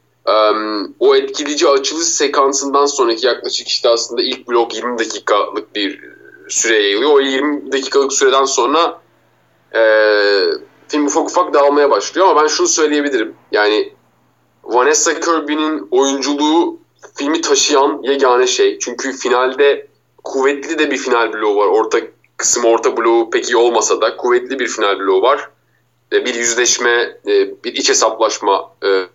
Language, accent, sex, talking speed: Turkish, native, male, 135 wpm